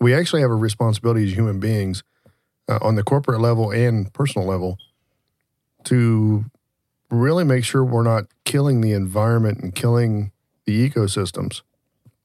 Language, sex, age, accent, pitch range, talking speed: English, male, 50-69, American, 105-130 Hz, 140 wpm